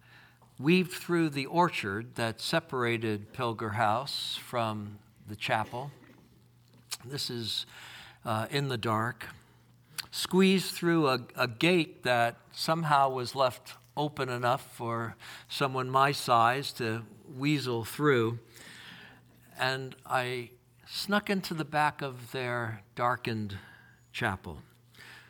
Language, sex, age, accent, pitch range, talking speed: English, male, 60-79, American, 110-130 Hz, 105 wpm